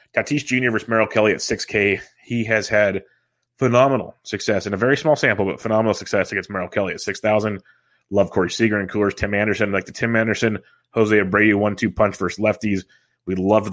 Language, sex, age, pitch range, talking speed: English, male, 30-49, 95-115 Hz, 190 wpm